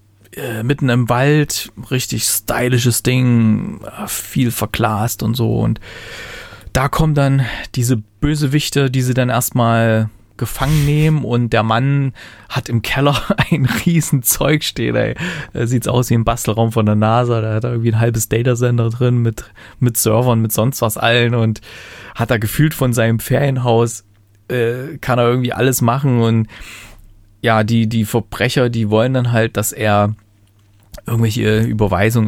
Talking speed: 150 wpm